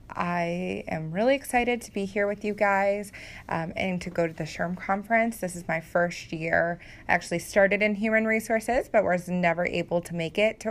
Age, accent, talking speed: 20-39, American, 205 wpm